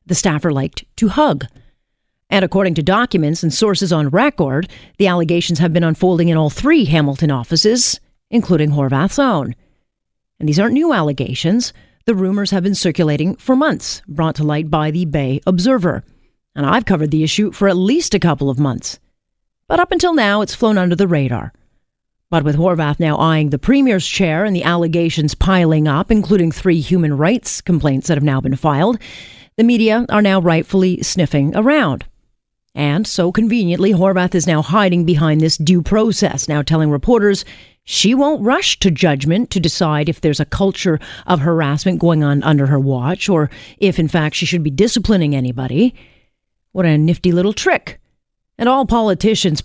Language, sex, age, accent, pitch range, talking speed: English, female, 40-59, American, 155-205 Hz, 175 wpm